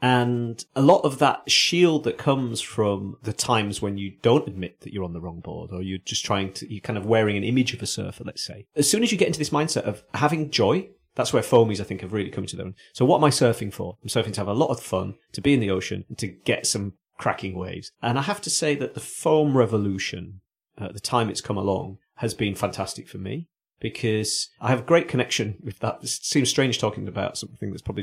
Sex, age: male, 30-49